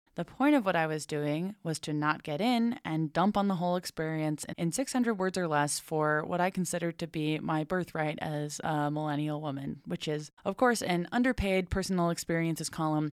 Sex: female